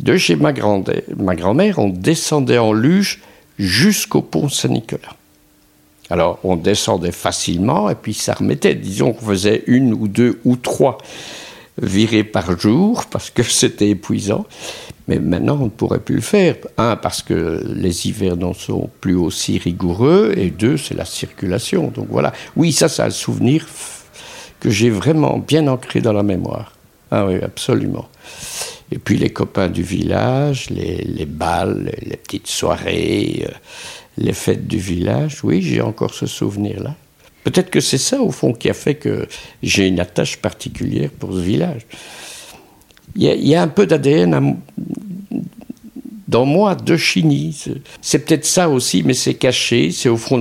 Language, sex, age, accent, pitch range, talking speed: French, male, 60-79, French, 100-150 Hz, 165 wpm